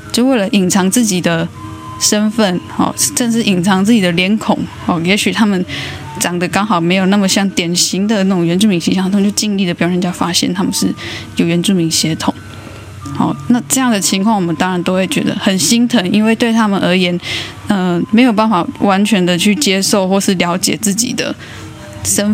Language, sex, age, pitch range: Chinese, female, 10-29, 175-215 Hz